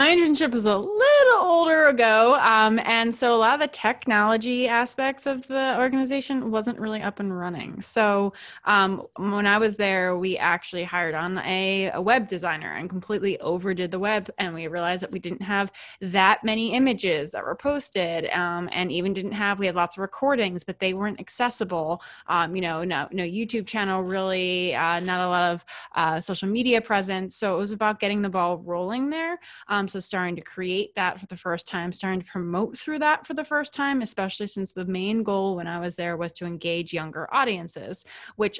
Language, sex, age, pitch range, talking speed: English, female, 20-39, 180-230 Hz, 200 wpm